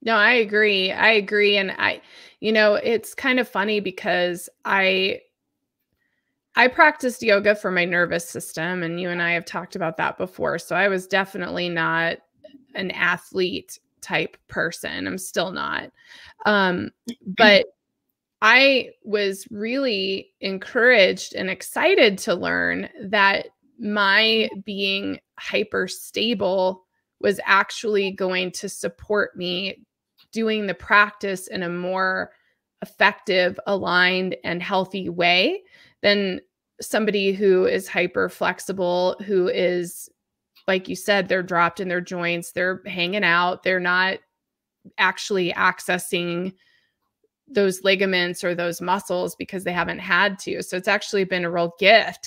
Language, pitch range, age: English, 180-210 Hz, 20-39